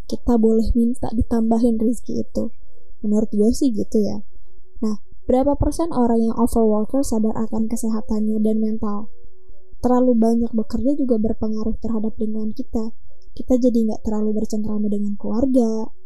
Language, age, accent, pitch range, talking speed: Indonesian, 20-39, native, 225-265 Hz, 140 wpm